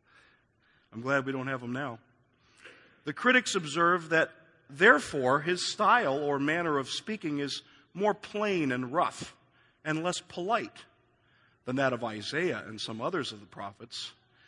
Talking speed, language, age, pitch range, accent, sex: 150 wpm, English, 50-69, 120-155 Hz, American, male